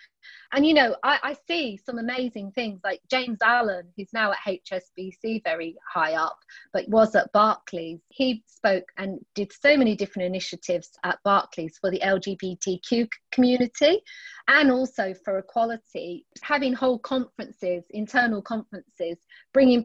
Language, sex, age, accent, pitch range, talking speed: English, female, 30-49, British, 185-240 Hz, 140 wpm